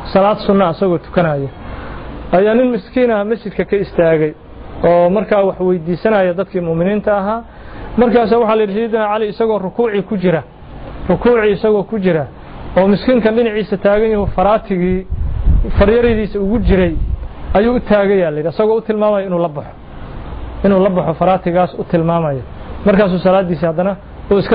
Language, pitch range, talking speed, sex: Arabic, 175-215 Hz, 105 wpm, male